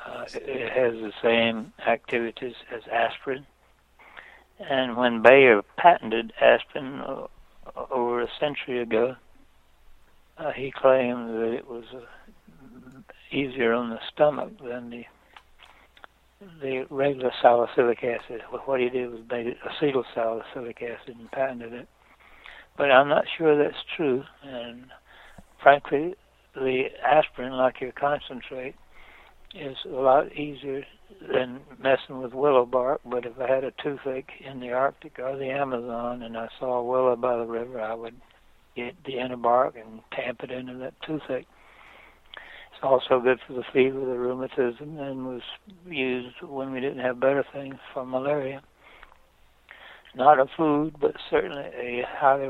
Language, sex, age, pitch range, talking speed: English, male, 60-79, 120-135 Hz, 145 wpm